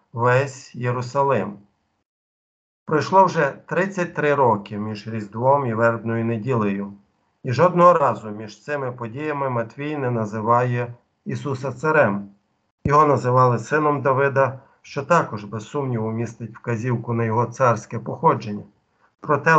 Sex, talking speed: male, 115 wpm